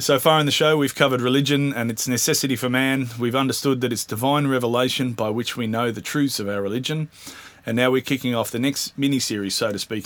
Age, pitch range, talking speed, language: 30-49, 110-135 Hz, 235 wpm, English